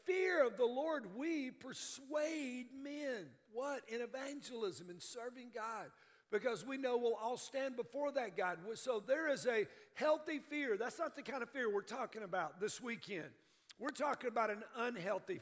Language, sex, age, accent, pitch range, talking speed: English, male, 50-69, American, 230-295 Hz, 170 wpm